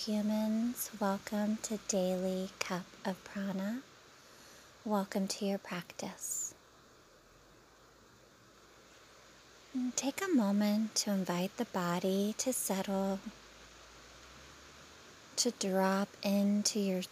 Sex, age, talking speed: female, 30-49, 85 wpm